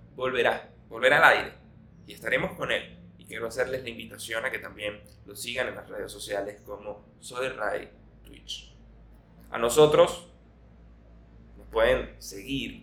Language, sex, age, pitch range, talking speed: Spanish, male, 20-39, 105-135 Hz, 145 wpm